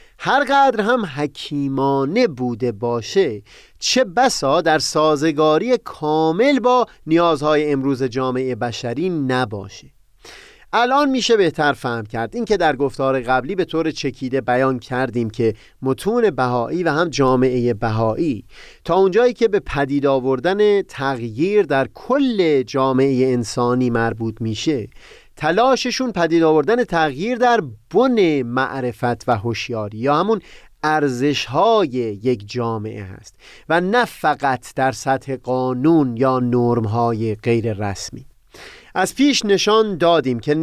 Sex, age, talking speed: male, 30-49, 120 wpm